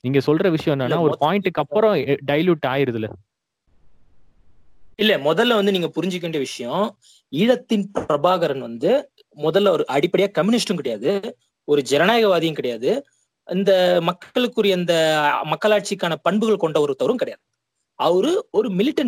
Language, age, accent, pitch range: Tamil, 20-39, native, 160-225 Hz